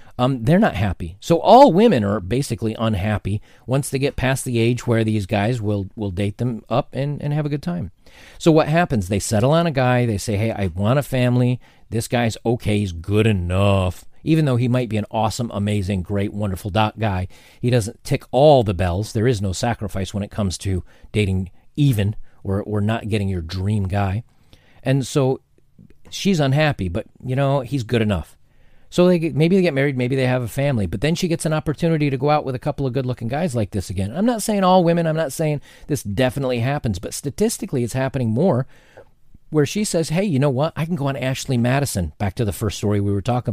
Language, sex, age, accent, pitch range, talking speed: English, male, 40-59, American, 105-145 Hz, 225 wpm